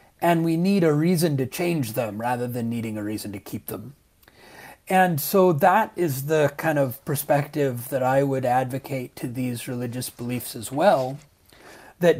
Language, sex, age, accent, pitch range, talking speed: English, male, 30-49, American, 125-155 Hz, 170 wpm